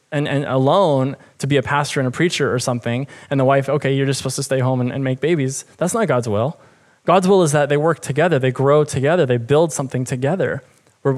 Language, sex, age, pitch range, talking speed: English, male, 20-39, 125-150 Hz, 240 wpm